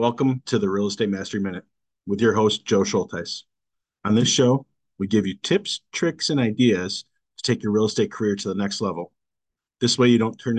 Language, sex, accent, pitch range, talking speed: English, male, American, 100-125 Hz, 210 wpm